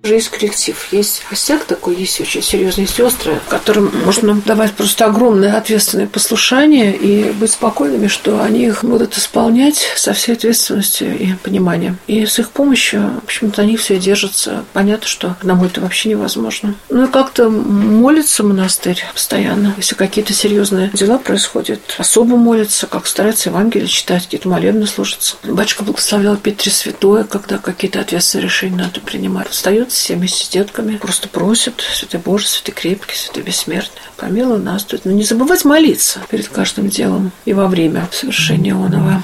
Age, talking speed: 50-69, 160 wpm